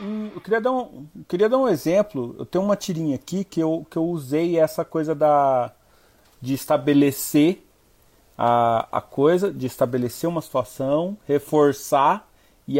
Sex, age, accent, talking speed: male, 40-59, Brazilian, 155 wpm